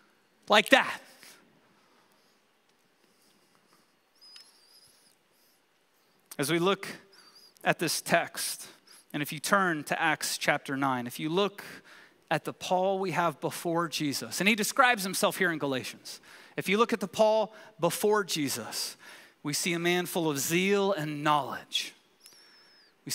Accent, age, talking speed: American, 30-49, 130 wpm